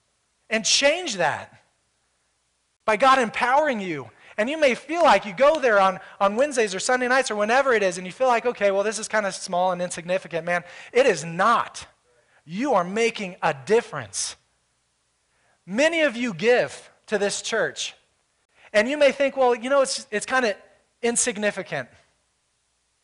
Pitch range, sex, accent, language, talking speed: 180-245 Hz, male, American, English, 170 wpm